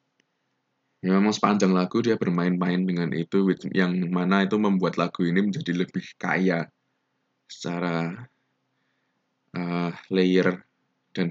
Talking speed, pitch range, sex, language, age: 110 wpm, 90-115 Hz, male, Indonesian, 20-39